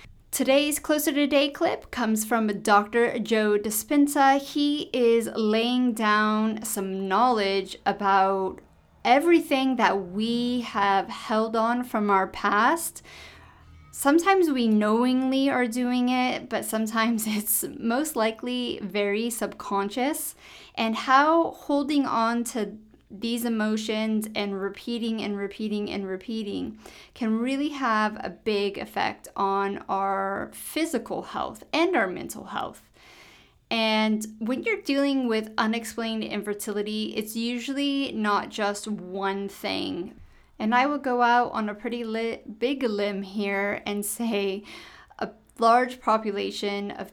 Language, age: English, 30-49